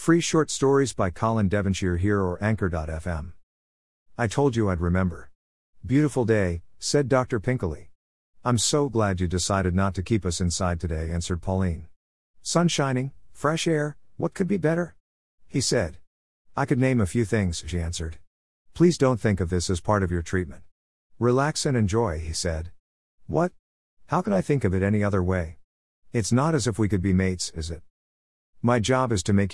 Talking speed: 185 wpm